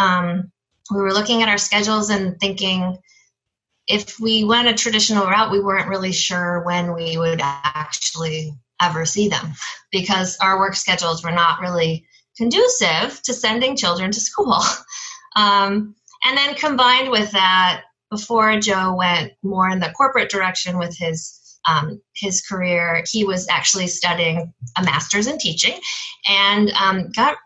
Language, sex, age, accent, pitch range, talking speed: English, female, 20-39, American, 175-235 Hz, 150 wpm